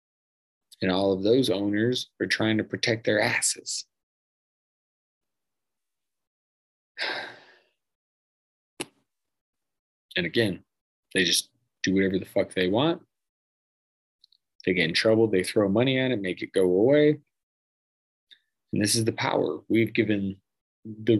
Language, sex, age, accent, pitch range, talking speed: English, male, 30-49, American, 90-115 Hz, 120 wpm